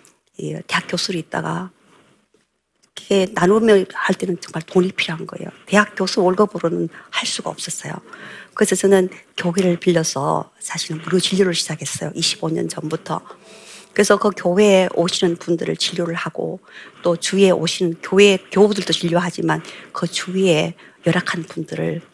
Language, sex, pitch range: Korean, female, 175-205 Hz